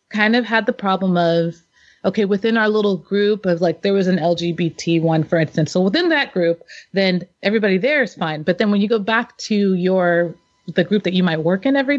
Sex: female